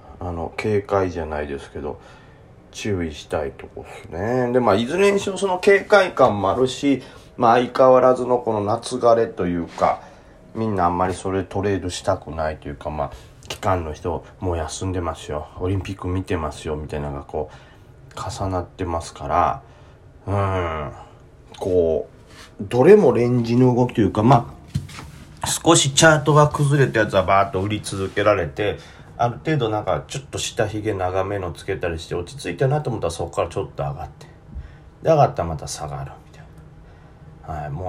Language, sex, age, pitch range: Japanese, male, 40-59, 85-120 Hz